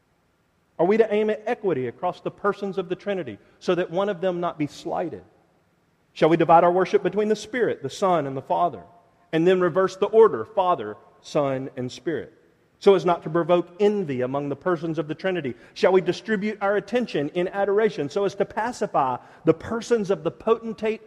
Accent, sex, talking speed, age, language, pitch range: American, male, 200 wpm, 40-59, English, 165-200 Hz